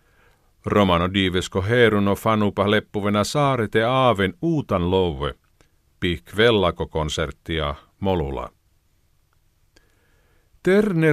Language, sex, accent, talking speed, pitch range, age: Finnish, male, native, 75 wpm, 85-115 Hz, 50-69